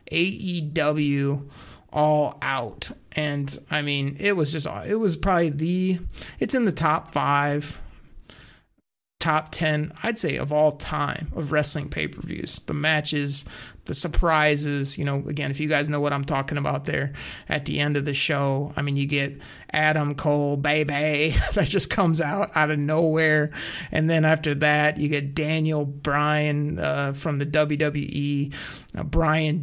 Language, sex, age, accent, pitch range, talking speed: English, male, 30-49, American, 145-160 Hz, 155 wpm